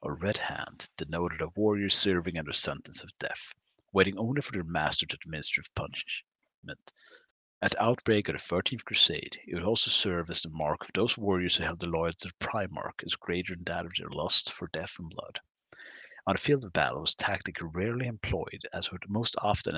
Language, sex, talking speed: English, male, 215 wpm